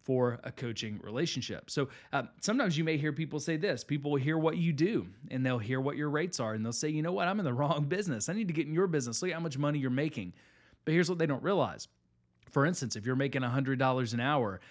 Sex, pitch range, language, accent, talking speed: male, 115-150 Hz, English, American, 265 wpm